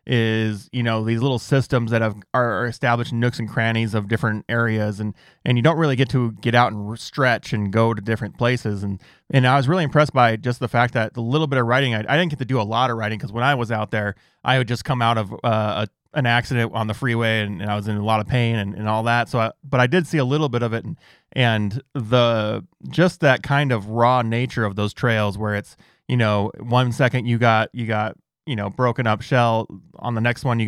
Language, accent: English, American